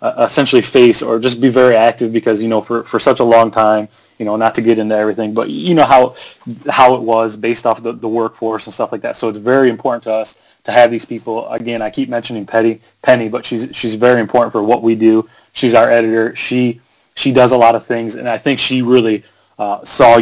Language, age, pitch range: English, 30-49, 110-125 Hz